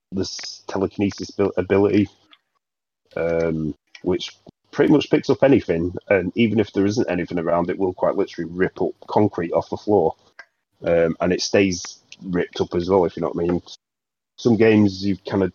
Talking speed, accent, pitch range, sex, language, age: 180 wpm, British, 85-100 Hz, male, English, 30-49